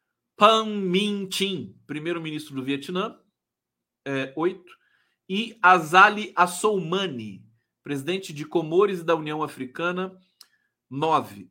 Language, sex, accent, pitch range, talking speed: Portuguese, male, Brazilian, 130-185 Hz, 90 wpm